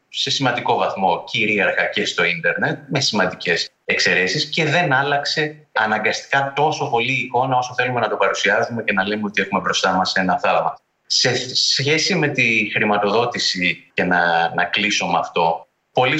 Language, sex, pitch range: Greek, male, 105-150 Hz